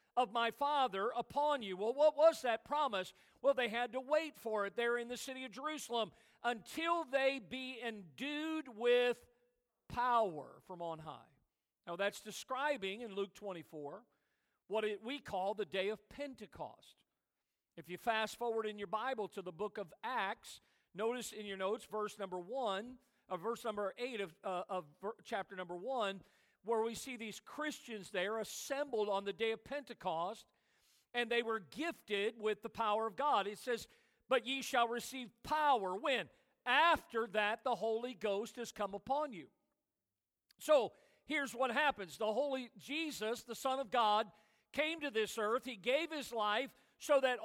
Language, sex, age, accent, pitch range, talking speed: English, male, 50-69, American, 210-265 Hz, 165 wpm